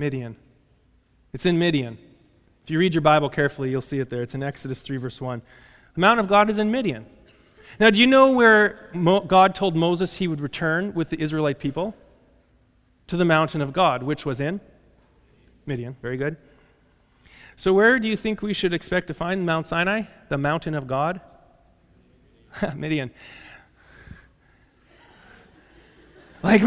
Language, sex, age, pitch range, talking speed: English, male, 30-49, 145-210 Hz, 160 wpm